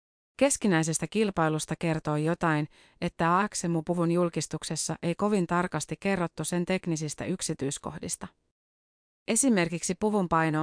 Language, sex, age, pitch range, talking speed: Finnish, female, 30-49, 155-185 Hz, 95 wpm